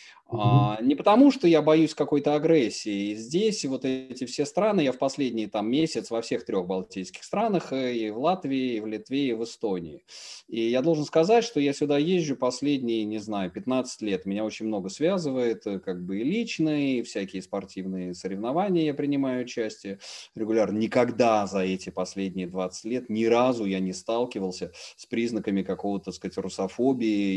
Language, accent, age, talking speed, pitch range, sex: Russian, native, 30-49, 175 wpm, 100-140 Hz, male